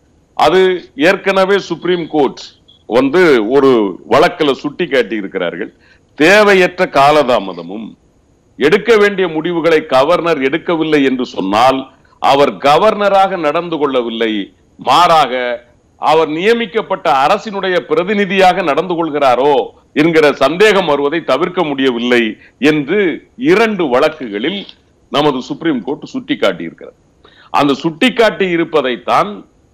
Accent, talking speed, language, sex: native, 85 wpm, Tamil, male